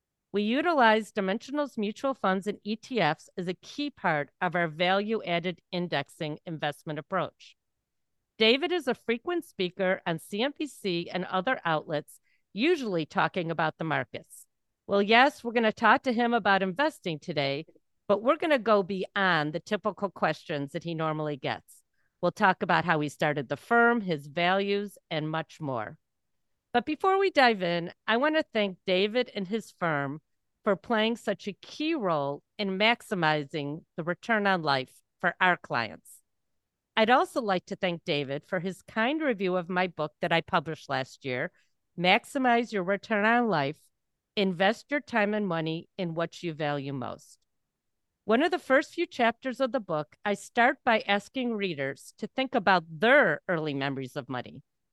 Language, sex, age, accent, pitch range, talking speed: English, female, 40-59, American, 155-225 Hz, 165 wpm